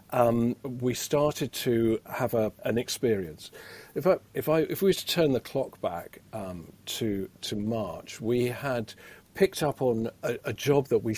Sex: male